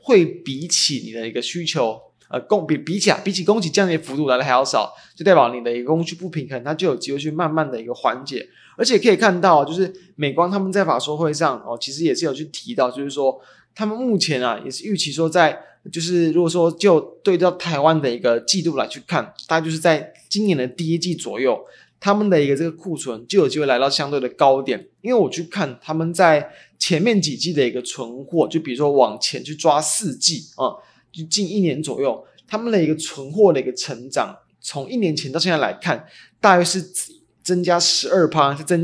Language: Chinese